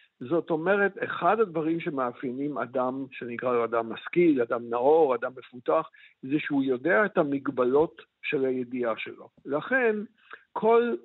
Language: Hebrew